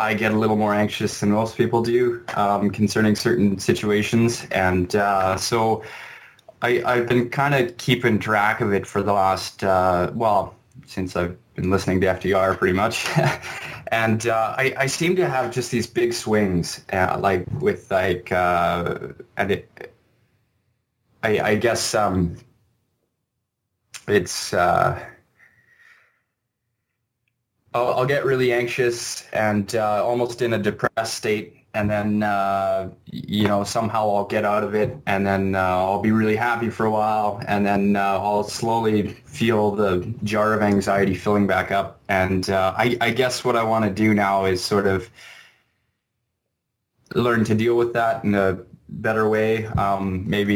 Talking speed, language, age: 160 wpm, English, 20-39